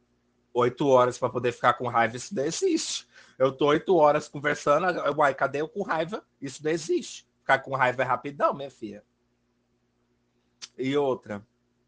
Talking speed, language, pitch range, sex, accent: 160 wpm, Portuguese, 110-155 Hz, male, Brazilian